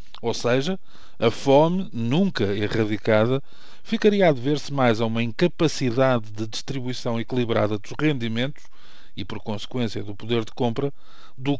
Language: Portuguese